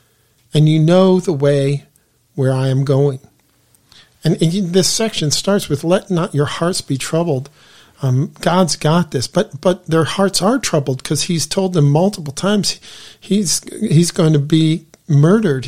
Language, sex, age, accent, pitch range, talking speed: English, male, 50-69, American, 145-180 Hz, 165 wpm